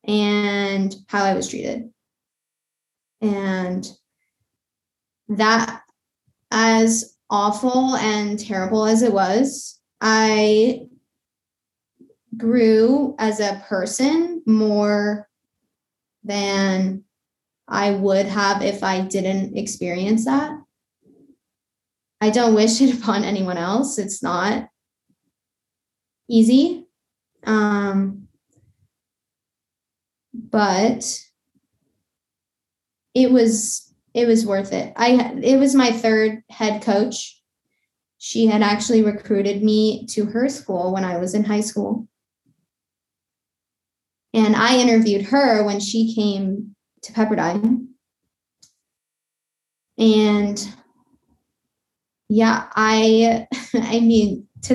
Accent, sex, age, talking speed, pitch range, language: American, female, 10-29, 90 wpm, 205-240 Hz, English